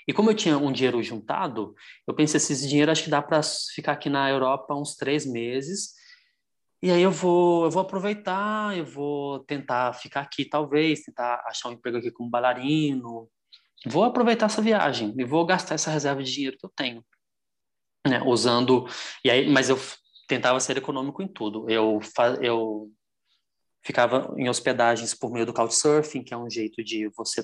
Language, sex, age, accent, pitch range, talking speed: Portuguese, male, 20-39, Brazilian, 115-145 Hz, 180 wpm